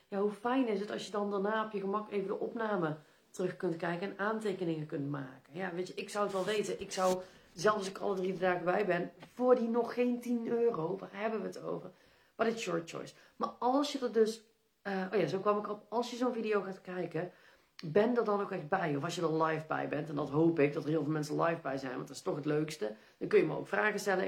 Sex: female